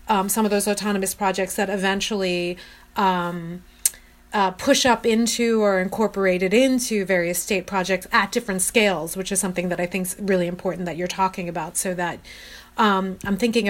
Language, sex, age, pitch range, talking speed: English, female, 30-49, 180-210 Hz, 175 wpm